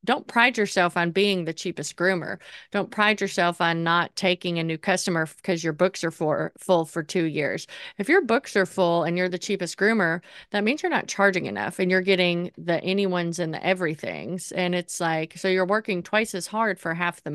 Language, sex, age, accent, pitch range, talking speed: English, female, 30-49, American, 175-205 Hz, 210 wpm